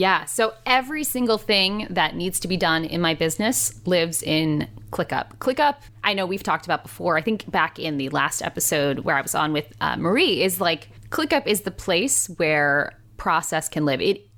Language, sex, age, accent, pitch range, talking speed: English, female, 10-29, American, 150-195 Hz, 195 wpm